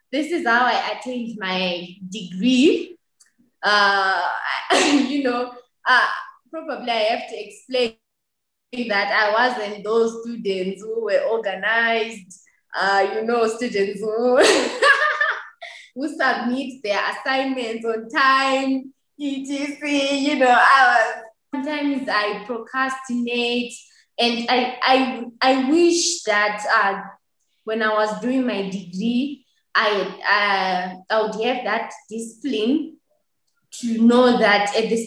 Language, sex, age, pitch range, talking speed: English, female, 20-39, 205-255 Hz, 115 wpm